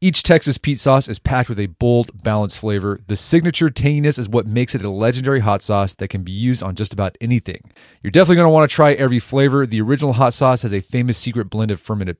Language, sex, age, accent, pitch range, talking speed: English, male, 30-49, American, 105-140 Hz, 245 wpm